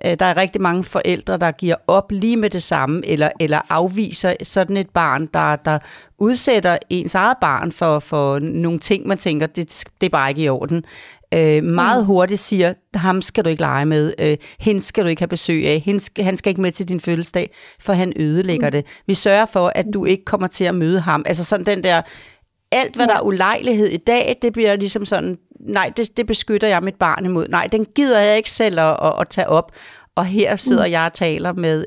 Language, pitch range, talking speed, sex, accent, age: Danish, 165-205 Hz, 220 wpm, female, native, 40-59